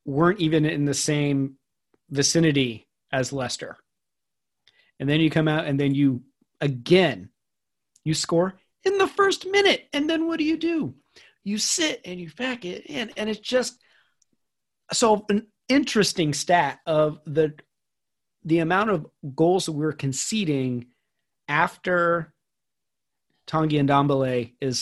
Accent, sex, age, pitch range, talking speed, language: American, male, 40-59, 140-180 Hz, 135 wpm, English